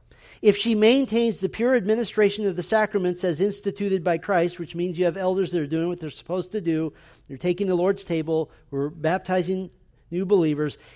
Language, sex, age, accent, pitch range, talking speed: English, male, 40-59, American, 130-180 Hz, 190 wpm